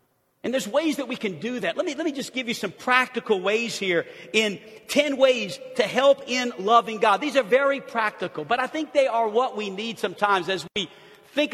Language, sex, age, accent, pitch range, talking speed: English, male, 50-69, American, 160-235 Hz, 225 wpm